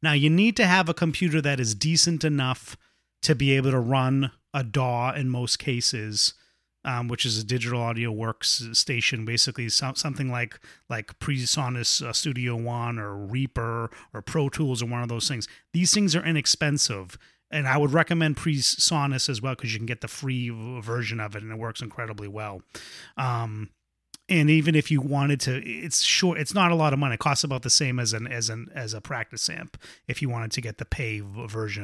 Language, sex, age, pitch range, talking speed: English, male, 30-49, 120-150 Hz, 200 wpm